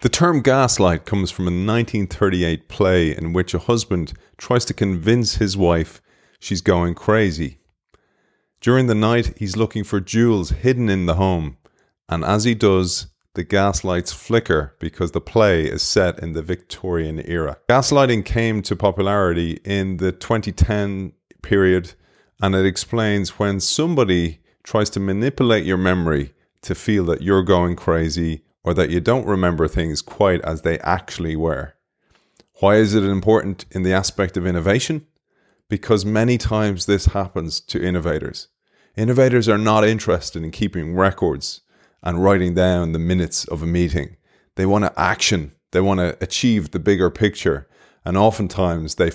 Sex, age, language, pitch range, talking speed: male, 30-49, English, 85-105 Hz, 155 wpm